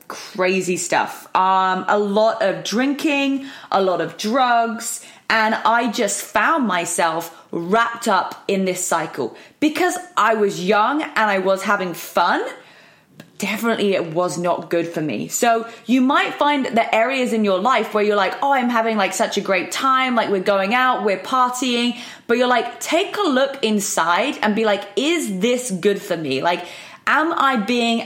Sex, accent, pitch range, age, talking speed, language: female, British, 200-255 Hz, 20-39, 175 wpm, English